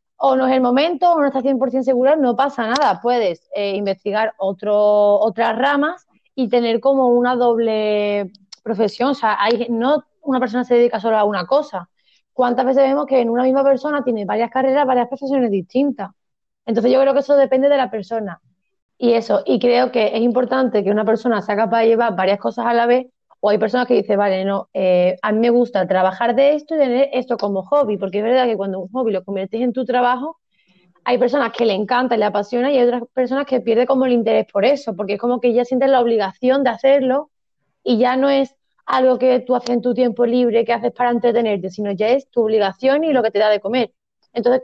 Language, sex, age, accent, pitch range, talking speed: Spanish, female, 20-39, Spanish, 215-265 Hz, 225 wpm